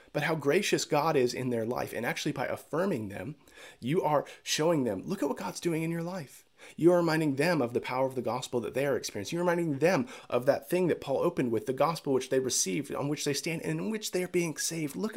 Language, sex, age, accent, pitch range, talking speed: English, male, 30-49, American, 105-160 Hz, 260 wpm